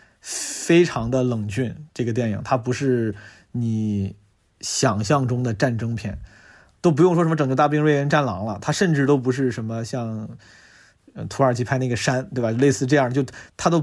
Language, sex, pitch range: Chinese, male, 115-150 Hz